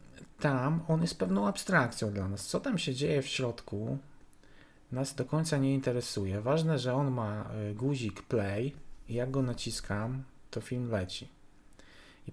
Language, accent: Polish, native